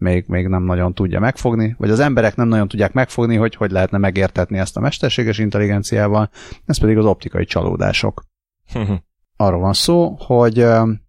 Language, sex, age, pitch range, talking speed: Hungarian, male, 30-49, 95-120 Hz, 160 wpm